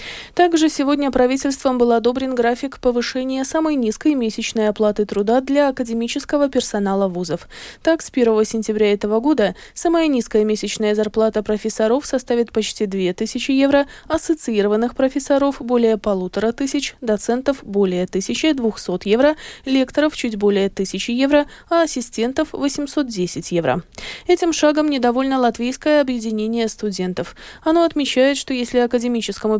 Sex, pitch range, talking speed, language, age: female, 215-280 Hz, 130 wpm, Russian, 20-39